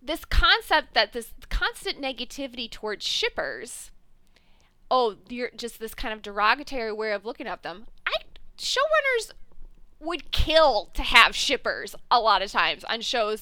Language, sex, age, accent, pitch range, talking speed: English, female, 20-39, American, 220-305 Hz, 150 wpm